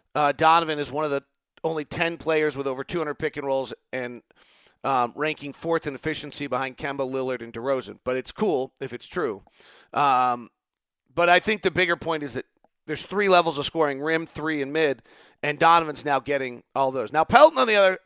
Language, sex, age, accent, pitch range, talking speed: English, male, 40-59, American, 130-175 Hz, 205 wpm